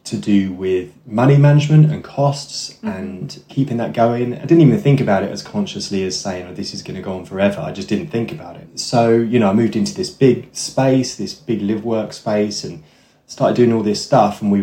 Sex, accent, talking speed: male, British, 230 wpm